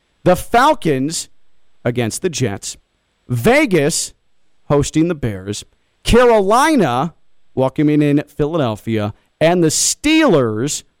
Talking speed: 85 wpm